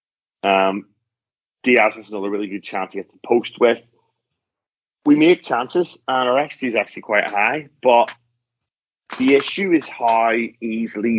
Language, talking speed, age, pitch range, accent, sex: English, 150 wpm, 30-49, 105-125 Hz, British, male